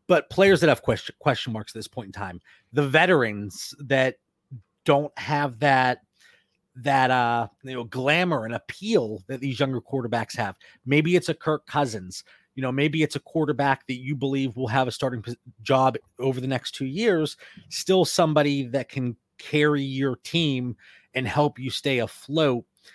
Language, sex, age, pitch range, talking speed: English, male, 30-49, 115-145 Hz, 175 wpm